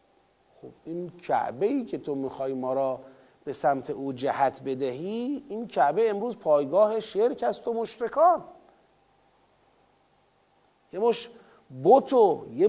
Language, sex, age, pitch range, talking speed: Persian, male, 40-59, 180-240 Hz, 110 wpm